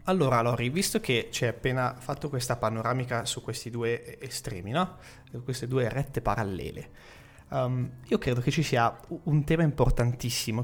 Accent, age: native, 30-49